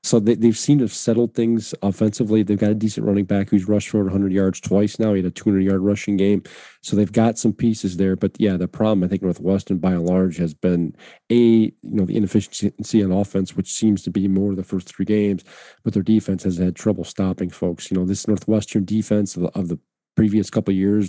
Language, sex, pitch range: English, male, 95-110 Hz